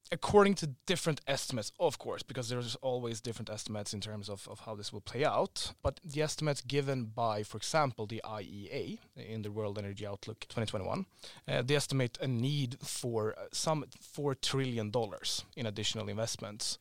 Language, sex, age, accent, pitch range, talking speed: English, male, 30-49, Norwegian, 110-135 Hz, 170 wpm